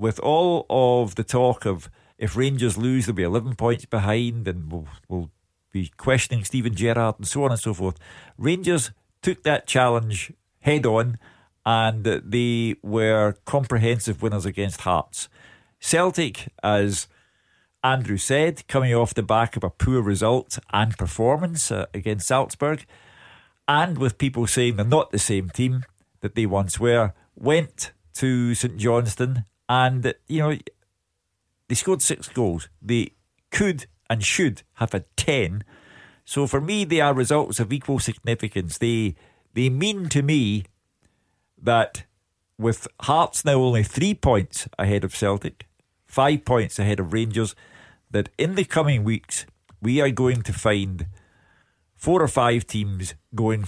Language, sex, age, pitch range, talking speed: English, male, 50-69, 100-130 Hz, 150 wpm